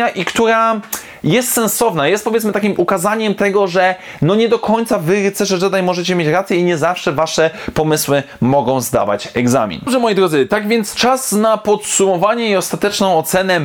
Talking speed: 165 wpm